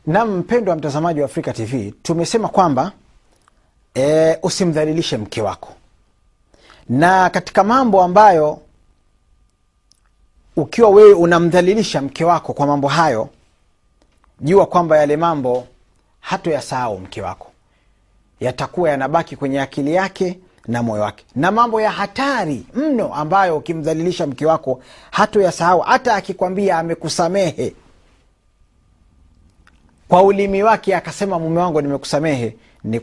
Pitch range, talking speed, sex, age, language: 120-180 Hz, 110 wpm, male, 40-59, Swahili